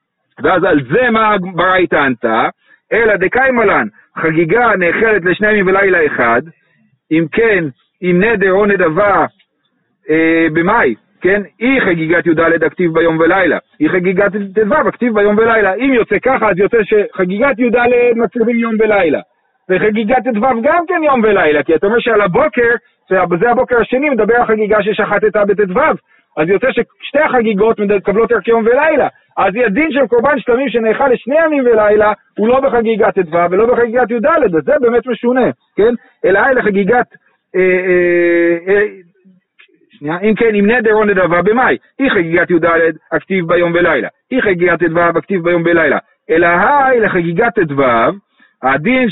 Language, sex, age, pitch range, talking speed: Hebrew, male, 50-69, 175-235 Hz, 150 wpm